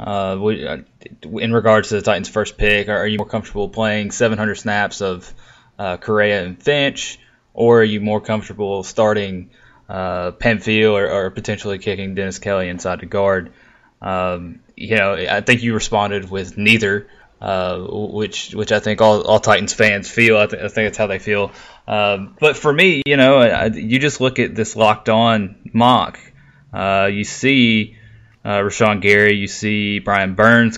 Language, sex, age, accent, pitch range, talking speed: English, male, 20-39, American, 100-115 Hz, 170 wpm